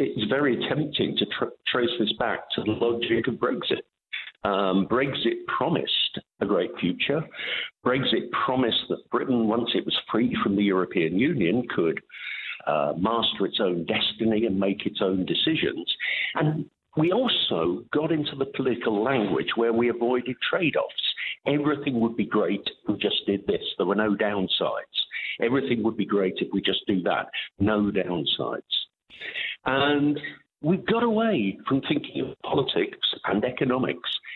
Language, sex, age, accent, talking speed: Danish, male, 50-69, British, 150 wpm